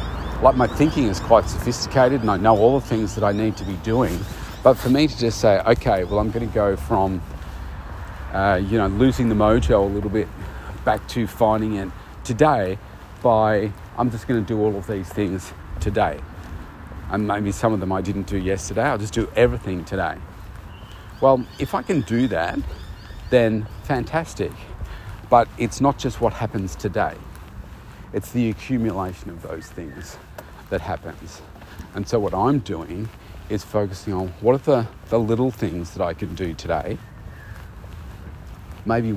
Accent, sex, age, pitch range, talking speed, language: Australian, male, 40-59, 90-110 Hz, 170 wpm, English